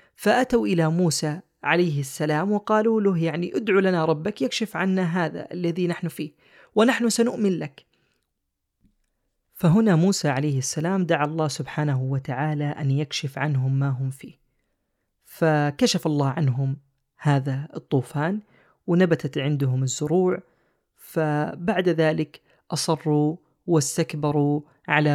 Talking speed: 110 wpm